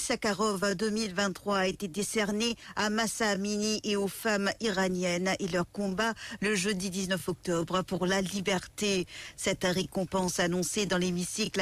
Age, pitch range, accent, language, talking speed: 50-69, 185-205 Hz, French, English, 140 wpm